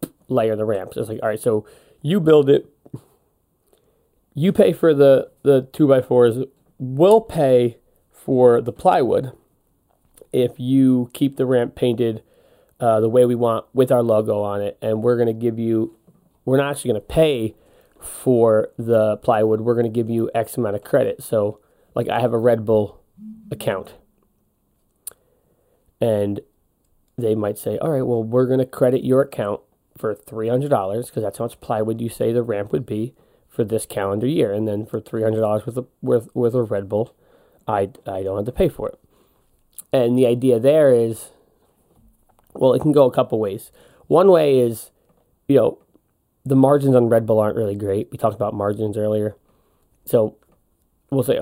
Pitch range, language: 110-130 Hz, English